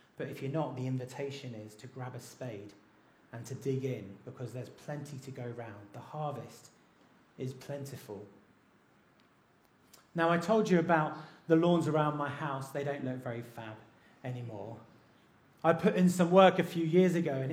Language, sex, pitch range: English, male, 125-160 Hz